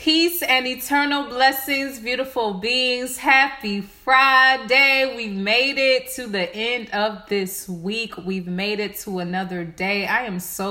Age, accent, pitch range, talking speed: 30-49, American, 200-250 Hz, 145 wpm